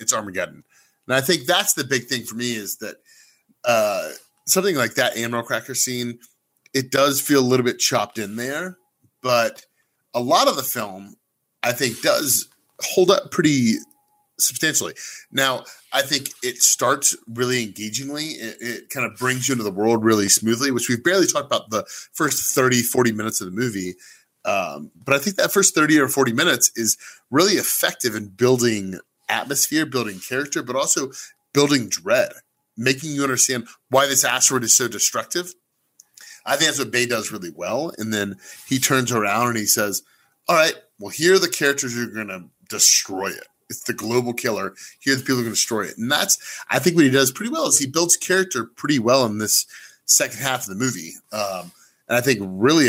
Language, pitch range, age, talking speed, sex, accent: English, 115-145 Hz, 30-49, 195 wpm, male, American